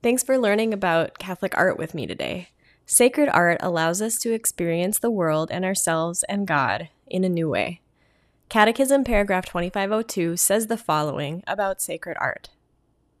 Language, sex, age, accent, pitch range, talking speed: English, female, 10-29, American, 165-200 Hz, 155 wpm